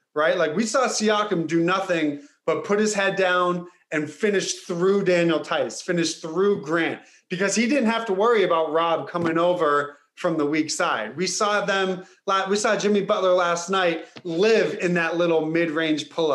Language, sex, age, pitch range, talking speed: English, male, 30-49, 160-195 Hz, 180 wpm